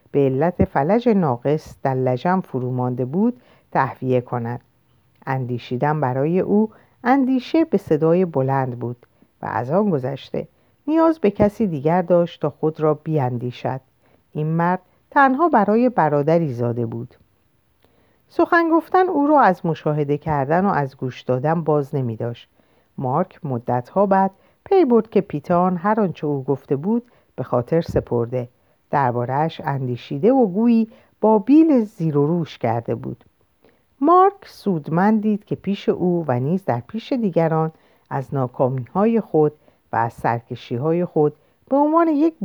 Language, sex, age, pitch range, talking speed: Persian, female, 50-69, 130-205 Hz, 145 wpm